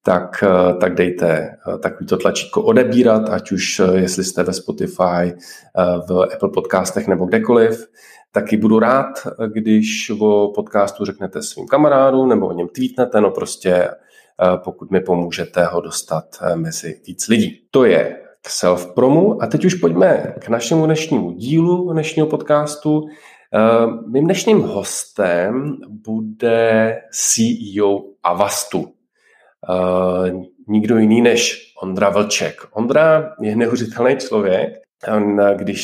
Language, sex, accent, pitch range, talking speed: Czech, male, native, 95-115 Hz, 120 wpm